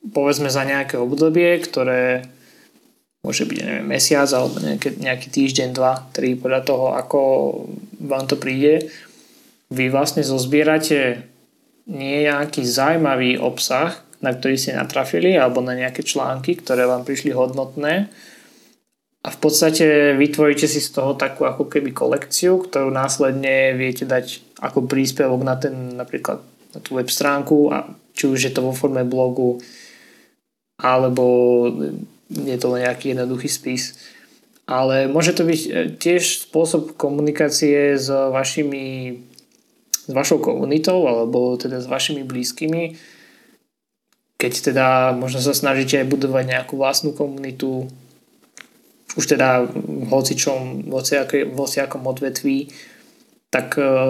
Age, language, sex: 20-39, Slovak, male